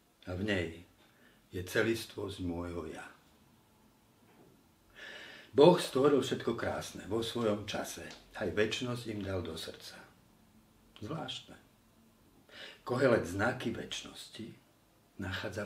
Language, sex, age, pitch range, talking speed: Slovak, male, 50-69, 95-115 Hz, 95 wpm